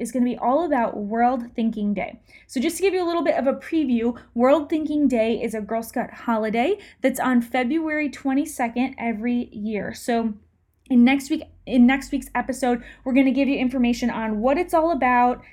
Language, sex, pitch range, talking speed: English, female, 225-275 Hz, 195 wpm